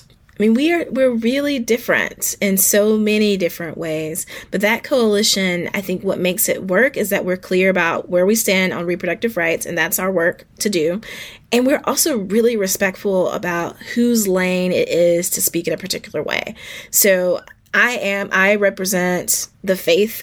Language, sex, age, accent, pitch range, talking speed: English, female, 20-39, American, 180-215 Hz, 180 wpm